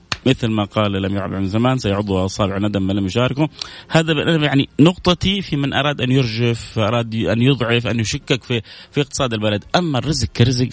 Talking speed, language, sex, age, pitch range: 185 wpm, Arabic, male, 30-49, 105-135 Hz